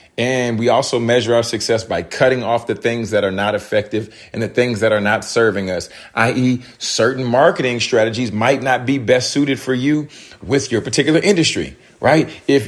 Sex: male